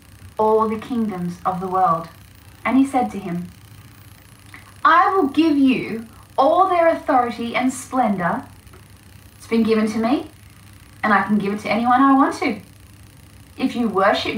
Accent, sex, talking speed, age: Australian, female, 160 wpm, 10-29